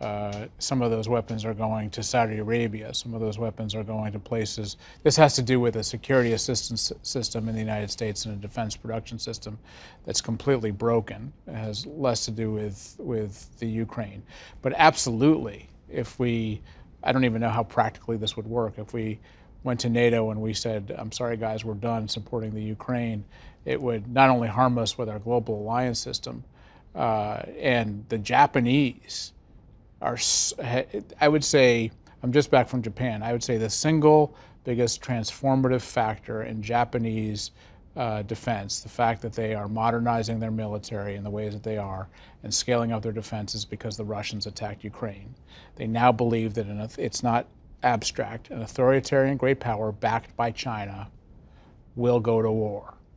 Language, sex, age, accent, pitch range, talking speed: English, male, 40-59, American, 105-120 Hz, 175 wpm